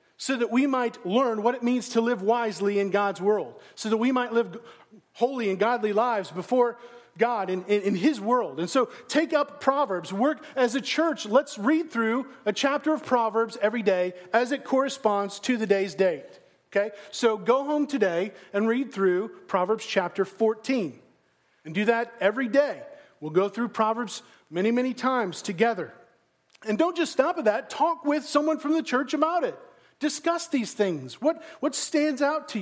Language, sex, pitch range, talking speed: English, male, 185-255 Hz, 185 wpm